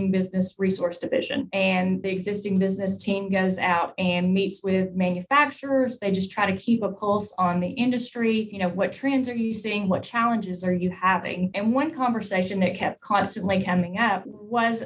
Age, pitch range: 20-39, 185-220 Hz